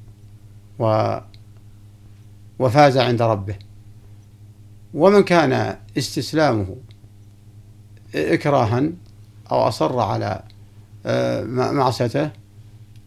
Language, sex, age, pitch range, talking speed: Arabic, male, 60-79, 105-130 Hz, 55 wpm